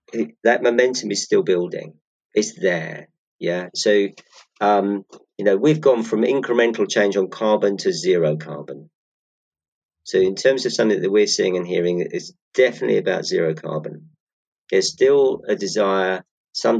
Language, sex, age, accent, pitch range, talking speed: English, male, 40-59, British, 90-140 Hz, 150 wpm